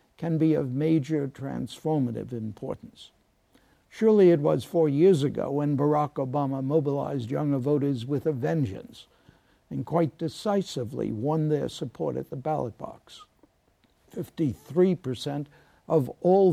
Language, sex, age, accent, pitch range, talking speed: English, male, 60-79, American, 125-160 Hz, 125 wpm